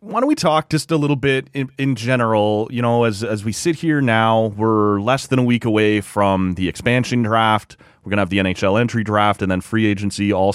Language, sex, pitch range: English, male, 100-135 Hz